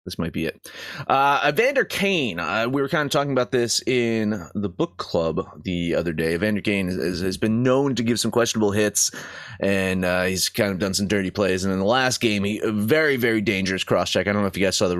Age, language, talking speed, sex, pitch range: 30-49, English, 240 wpm, male, 100-140 Hz